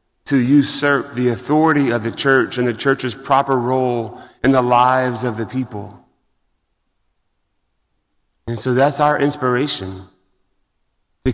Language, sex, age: English, male, 30-49